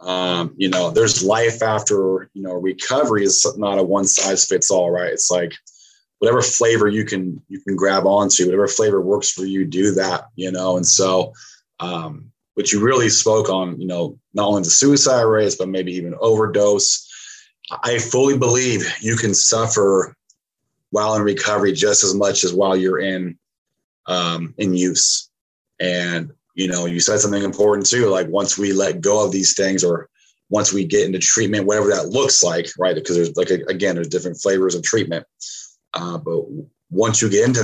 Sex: male